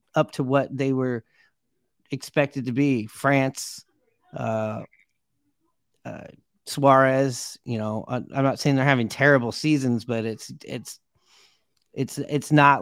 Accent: American